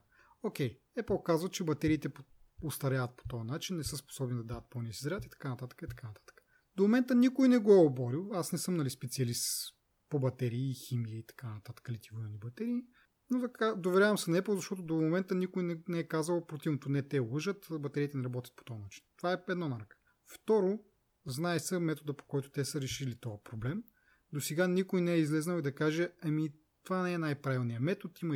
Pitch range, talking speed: 130-180 Hz, 205 wpm